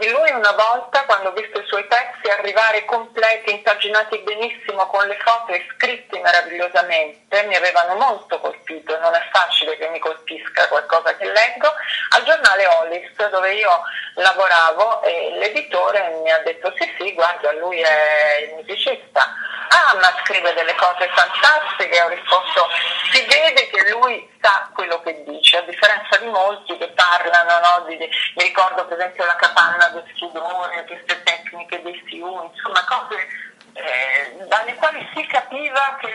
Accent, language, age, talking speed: native, Italian, 30-49, 155 wpm